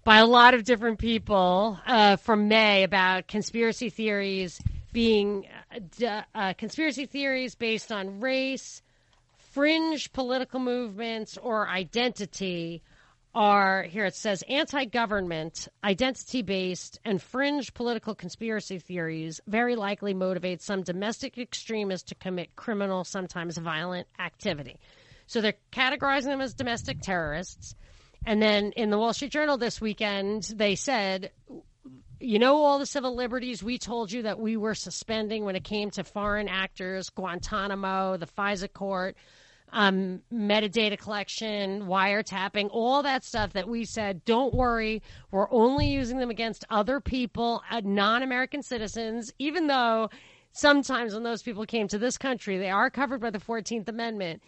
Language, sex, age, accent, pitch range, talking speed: English, female, 40-59, American, 190-240 Hz, 140 wpm